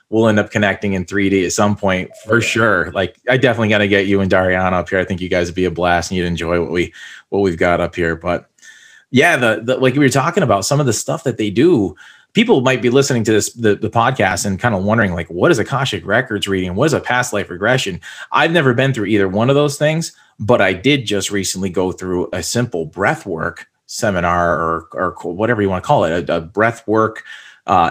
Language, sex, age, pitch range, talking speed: English, male, 30-49, 90-125 Hz, 245 wpm